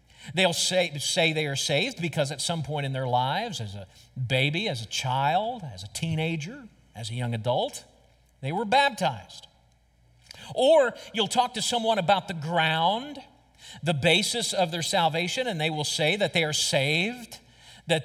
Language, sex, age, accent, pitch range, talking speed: English, male, 50-69, American, 150-225 Hz, 170 wpm